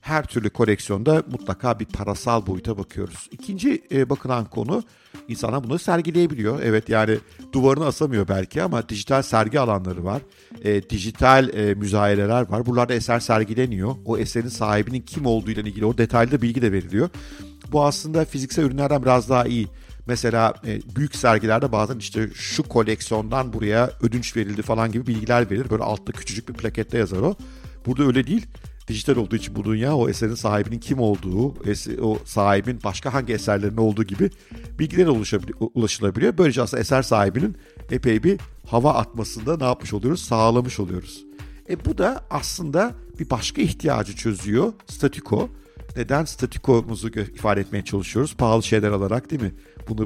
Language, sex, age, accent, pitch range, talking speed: Turkish, male, 50-69, native, 105-130 Hz, 155 wpm